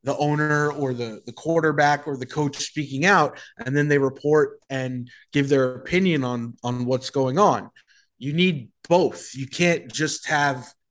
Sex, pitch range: male, 130-150 Hz